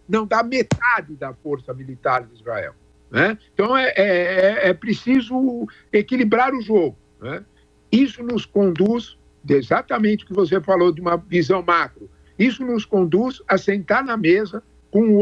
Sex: male